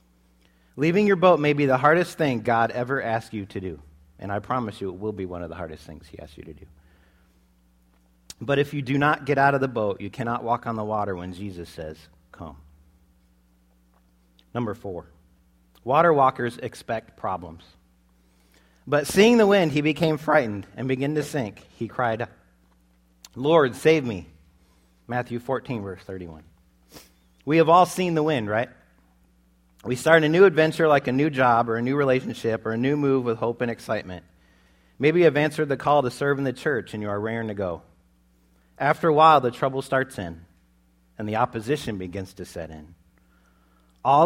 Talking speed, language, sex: 185 wpm, English, male